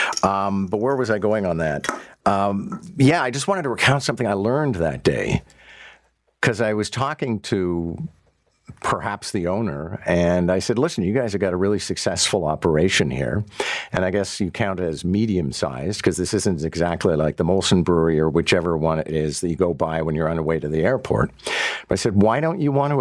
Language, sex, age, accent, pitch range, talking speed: English, male, 50-69, American, 90-115 Hz, 215 wpm